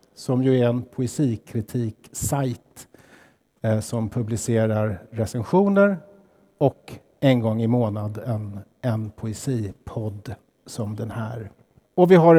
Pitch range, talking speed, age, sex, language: 120-155 Hz, 110 wpm, 50-69, male, Swedish